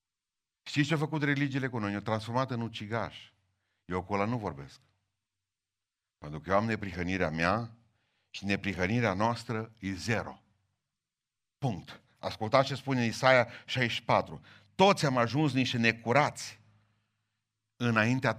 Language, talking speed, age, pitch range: Romanian, 125 wpm, 50-69, 105-140 Hz